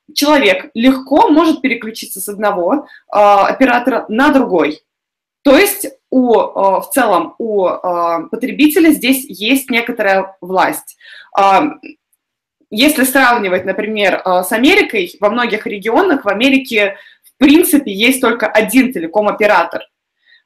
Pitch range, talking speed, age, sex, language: 200-280 Hz, 105 wpm, 20-39, female, Russian